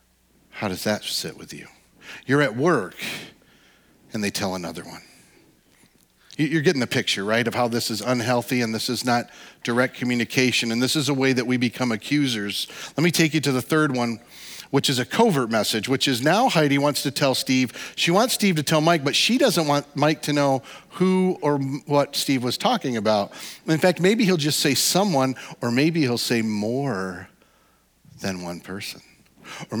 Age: 40-59